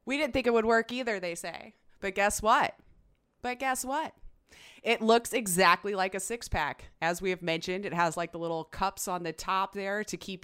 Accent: American